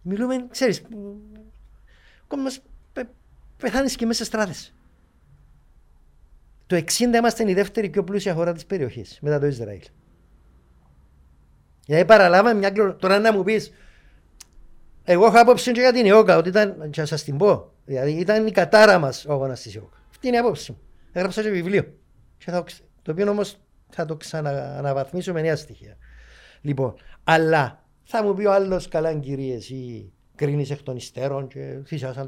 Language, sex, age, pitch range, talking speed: Greek, male, 50-69, 130-185 Hz, 160 wpm